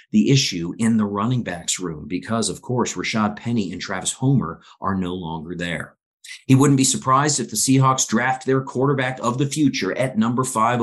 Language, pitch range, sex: English, 100-135 Hz, male